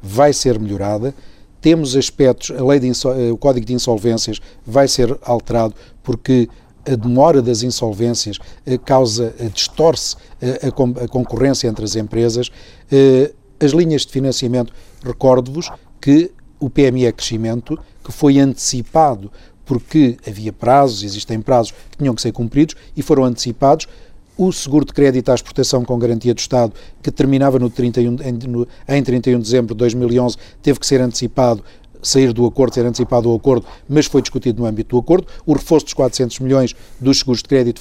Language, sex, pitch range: Portuguese, male, 120-140 Hz